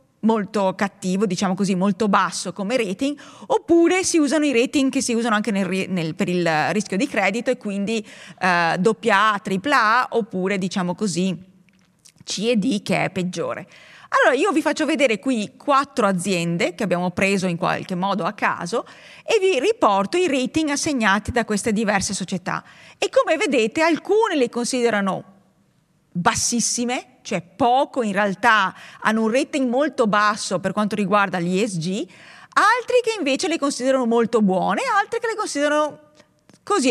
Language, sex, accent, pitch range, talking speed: Italian, female, native, 190-270 Hz, 160 wpm